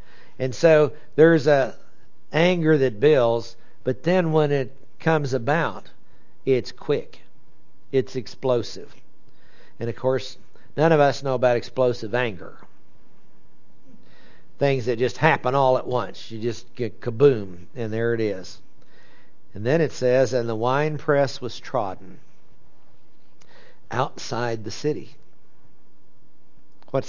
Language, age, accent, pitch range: English, 60-79, American, 120-150 Hz